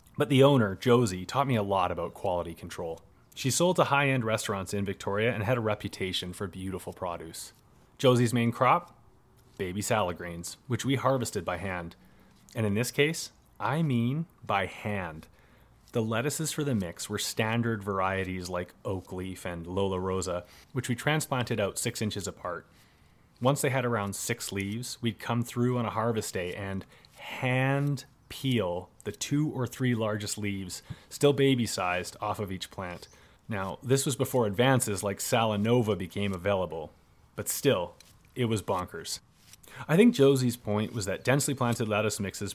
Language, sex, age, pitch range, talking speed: English, male, 30-49, 95-125 Hz, 165 wpm